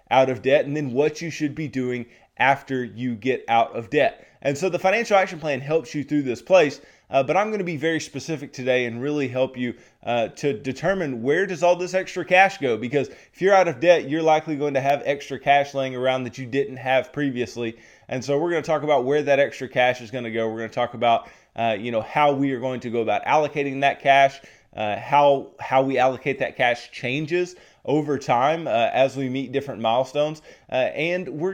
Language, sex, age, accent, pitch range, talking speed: English, male, 20-39, American, 120-150 Hz, 230 wpm